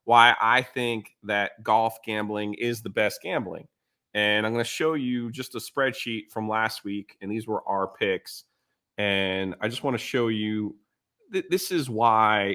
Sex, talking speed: male, 180 wpm